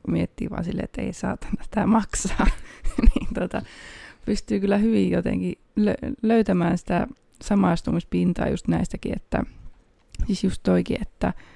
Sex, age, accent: female, 20-39, native